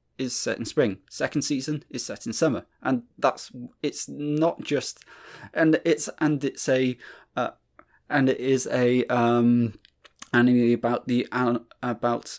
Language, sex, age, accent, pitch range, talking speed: English, male, 20-39, British, 115-150 Hz, 145 wpm